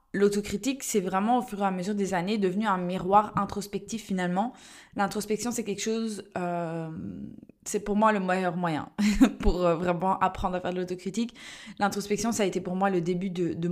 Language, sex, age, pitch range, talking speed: French, female, 20-39, 185-220 Hz, 190 wpm